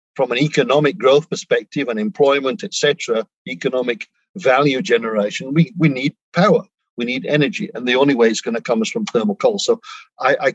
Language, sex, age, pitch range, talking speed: English, male, 50-69, 120-180 Hz, 195 wpm